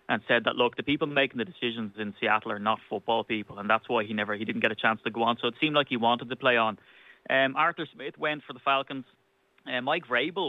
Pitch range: 115-135 Hz